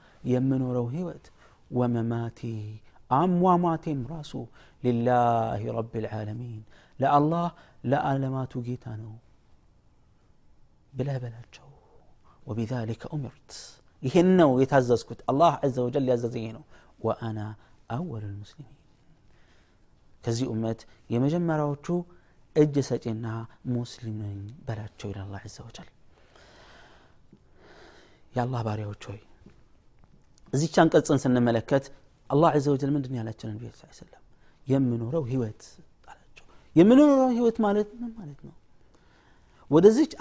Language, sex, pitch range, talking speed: Amharic, male, 115-170 Hz, 80 wpm